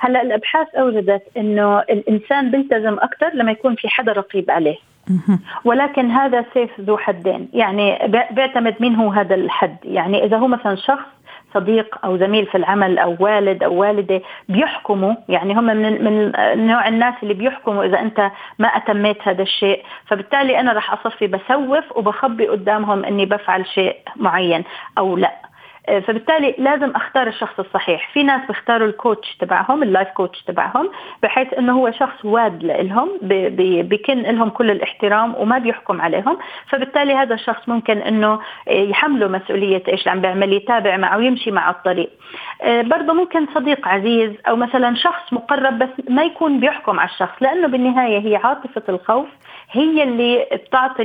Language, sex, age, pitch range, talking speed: Arabic, female, 40-59, 200-255 Hz, 150 wpm